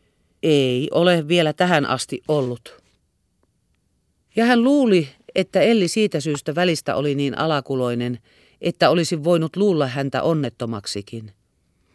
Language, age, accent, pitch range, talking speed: Finnish, 40-59, native, 115-145 Hz, 115 wpm